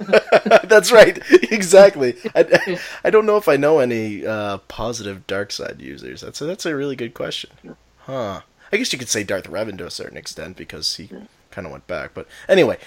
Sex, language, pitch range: male, English, 105-140 Hz